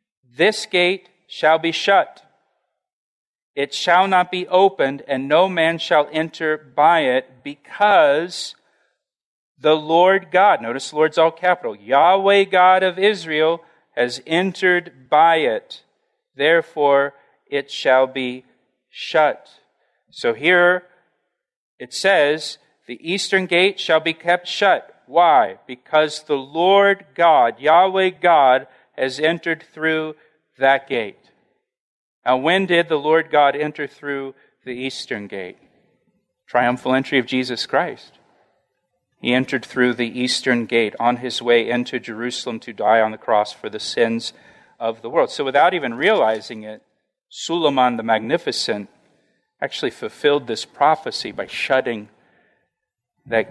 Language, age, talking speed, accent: English, 40-59, 130 wpm, American